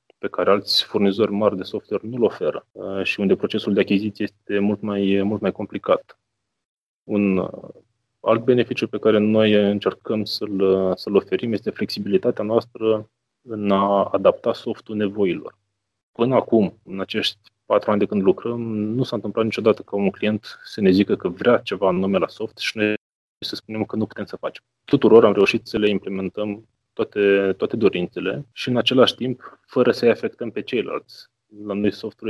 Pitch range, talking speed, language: 100-110 Hz, 175 wpm, Romanian